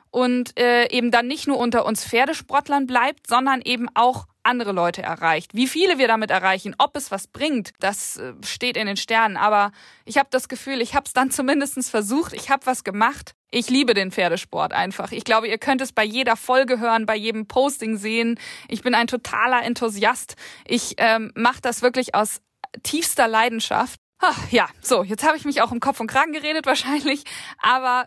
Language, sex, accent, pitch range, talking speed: German, female, German, 225-275 Hz, 195 wpm